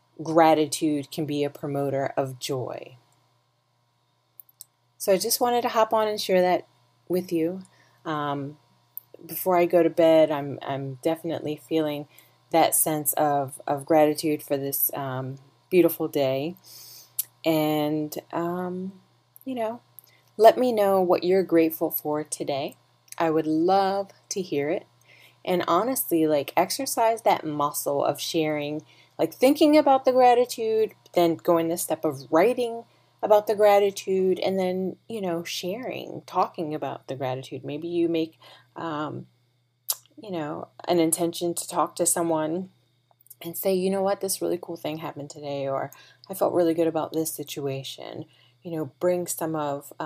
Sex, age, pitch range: female, 30-49, 135-185 Hz